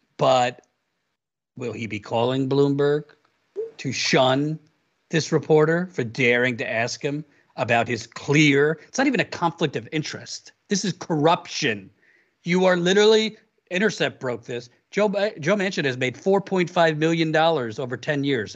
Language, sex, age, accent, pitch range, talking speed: English, male, 40-59, American, 115-165 Hz, 150 wpm